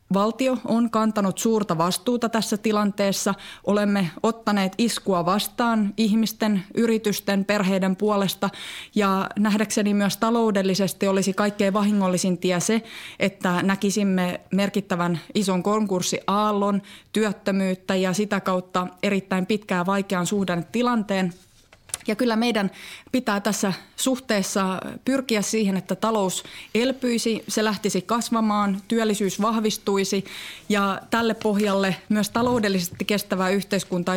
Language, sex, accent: Finnish, female, native